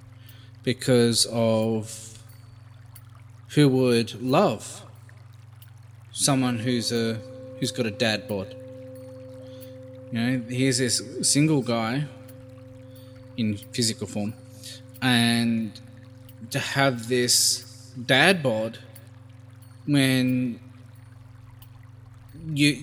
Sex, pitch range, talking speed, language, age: male, 115-130 Hz, 80 wpm, English, 20-39